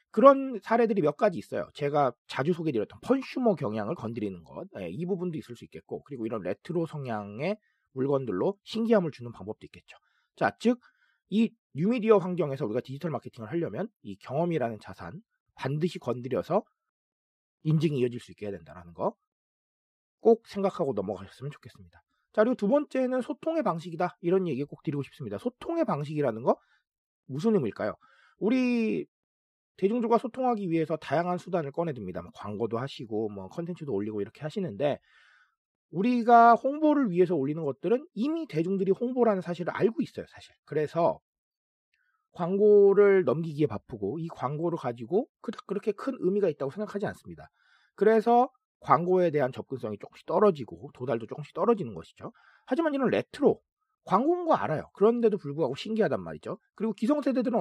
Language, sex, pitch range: Korean, male, 135-225 Hz